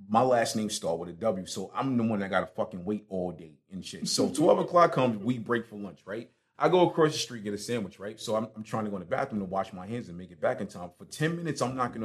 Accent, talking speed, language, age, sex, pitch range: American, 310 wpm, English, 30-49, male, 95-125 Hz